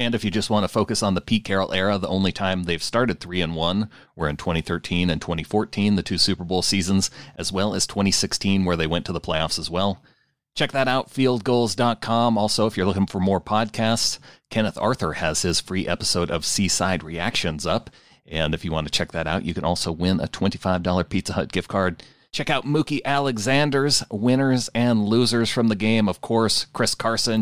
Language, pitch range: English, 85-110 Hz